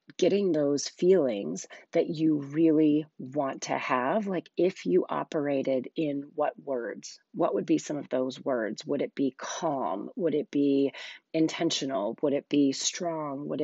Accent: American